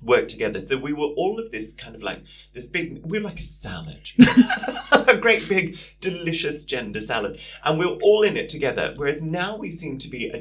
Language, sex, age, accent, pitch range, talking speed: English, male, 30-49, British, 115-165 Hz, 210 wpm